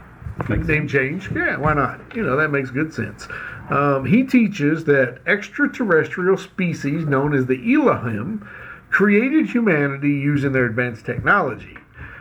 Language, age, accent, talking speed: English, 50-69, American, 135 wpm